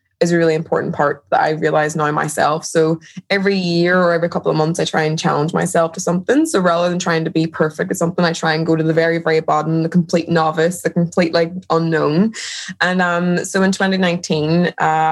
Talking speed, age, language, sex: 220 wpm, 20-39, English, female